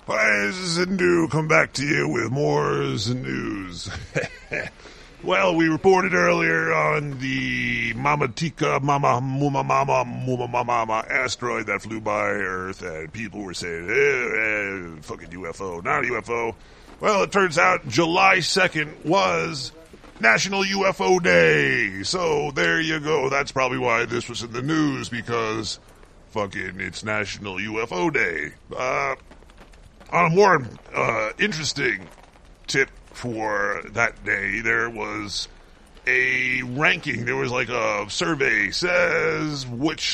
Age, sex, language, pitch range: 40-59, female, English, 110-155 Hz